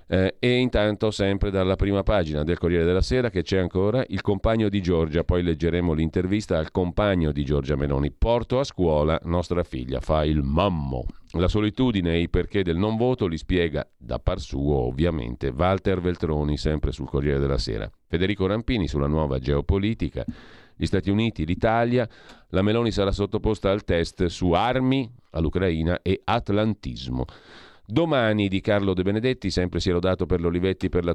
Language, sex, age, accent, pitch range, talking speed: Italian, male, 40-59, native, 85-105 Hz, 170 wpm